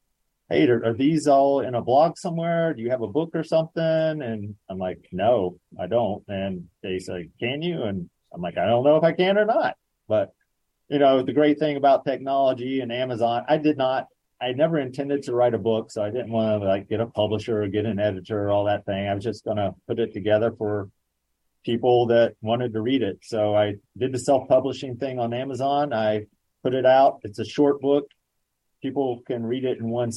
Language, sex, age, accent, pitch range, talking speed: English, male, 30-49, American, 100-130 Hz, 225 wpm